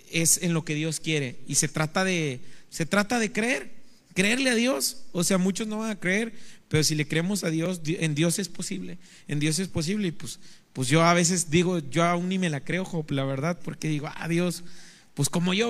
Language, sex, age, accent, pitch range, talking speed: Spanish, male, 40-59, Mexican, 155-195 Hz, 230 wpm